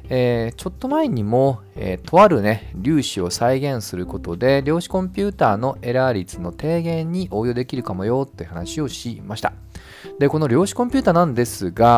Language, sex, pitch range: Japanese, male, 100-165 Hz